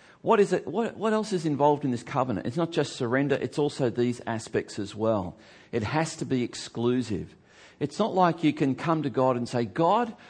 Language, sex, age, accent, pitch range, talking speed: English, male, 40-59, Australian, 110-150 Hz, 215 wpm